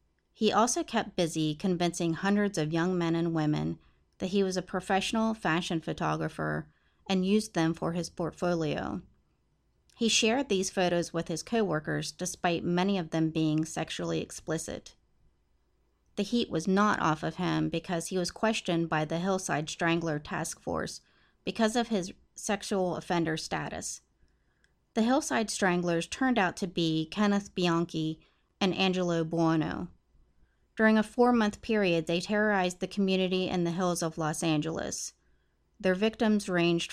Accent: American